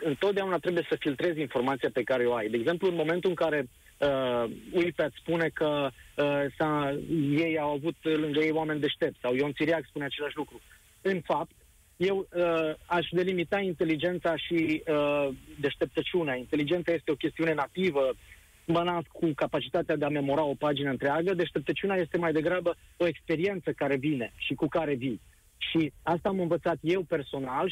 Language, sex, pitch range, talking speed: Romanian, male, 145-180 Hz, 160 wpm